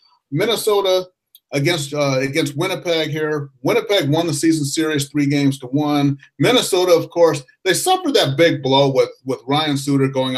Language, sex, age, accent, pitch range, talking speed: English, male, 30-49, American, 135-175 Hz, 160 wpm